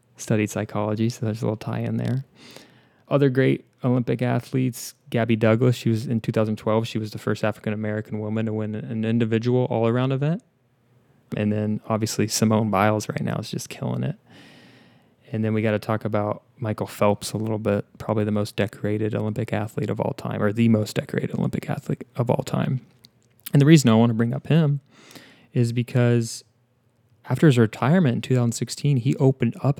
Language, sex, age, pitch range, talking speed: English, male, 20-39, 110-125 Hz, 180 wpm